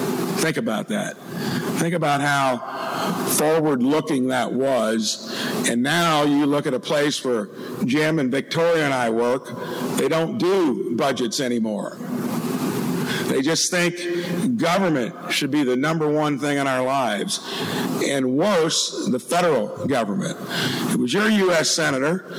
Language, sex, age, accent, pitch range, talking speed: English, male, 50-69, American, 140-175 Hz, 135 wpm